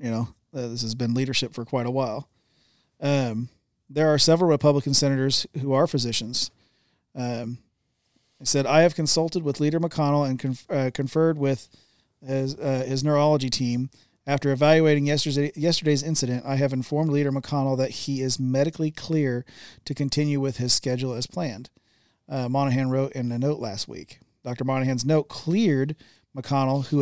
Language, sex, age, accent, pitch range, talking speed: English, male, 40-59, American, 130-150 Hz, 160 wpm